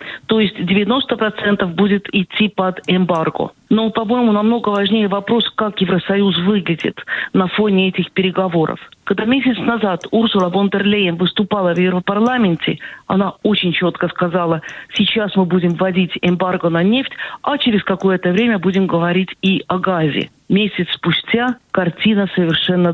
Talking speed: 135 wpm